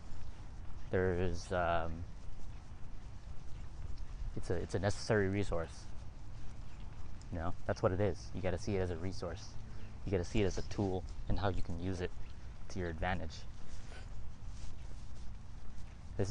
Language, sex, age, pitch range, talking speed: English, male, 20-39, 90-105 Hz, 150 wpm